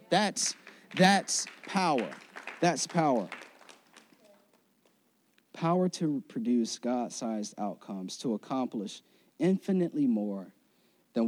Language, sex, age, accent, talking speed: English, male, 40-59, American, 80 wpm